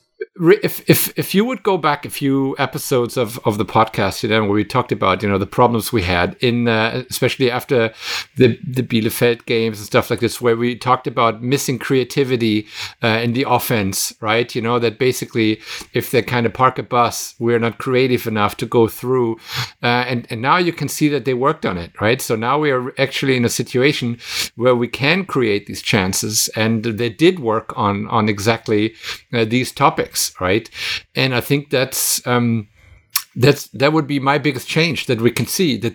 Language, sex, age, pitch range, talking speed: English, male, 50-69, 115-140 Hz, 205 wpm